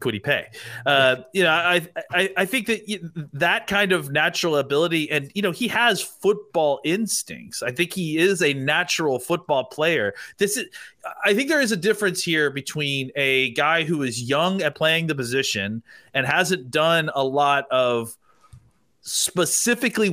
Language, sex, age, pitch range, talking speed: English, male, 30-49, 135-175 Hz, 170 wpm